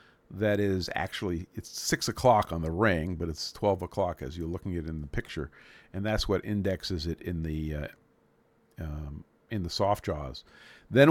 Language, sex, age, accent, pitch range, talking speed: English, male, 50-69, American, 90-120 Hz, 190 wpm